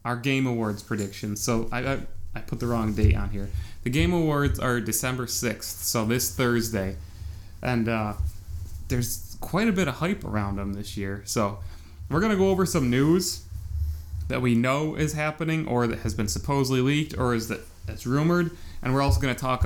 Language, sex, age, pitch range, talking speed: English, male, 30-49, 100-130 Hz, 200 wpm